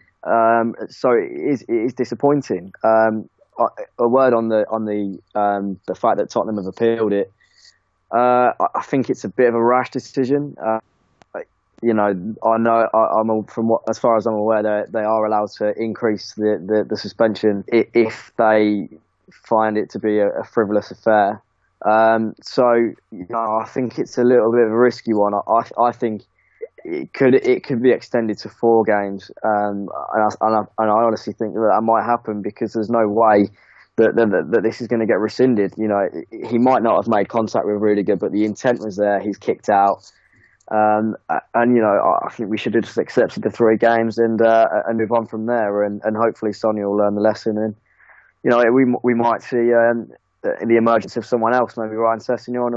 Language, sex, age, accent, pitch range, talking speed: English, male, 10-29, British, 105-120 Hz, 215 wpm